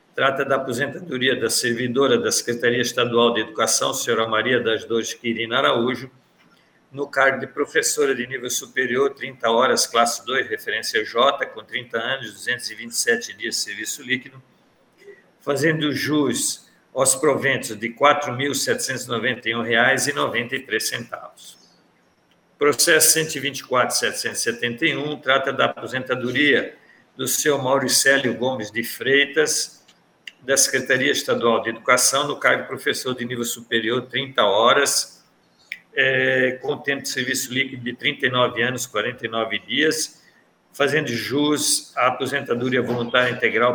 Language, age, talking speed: Portuguese, 60-79, 115 wpm